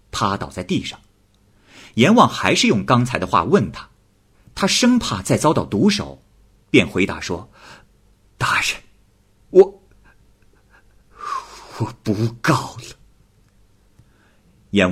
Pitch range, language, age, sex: 100-130 Hz, Chinese, 50-69, male